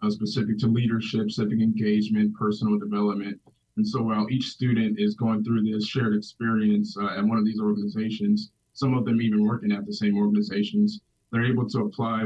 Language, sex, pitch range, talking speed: English, male, 105-120 Hz, 180 wpm